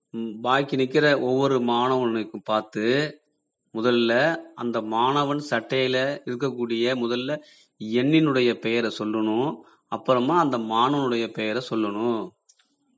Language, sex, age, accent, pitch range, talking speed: Tamil, male, 30-49, native, 115-130 Hz, 90 wpm